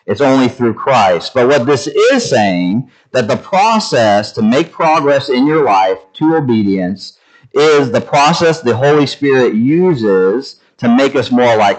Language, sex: English, male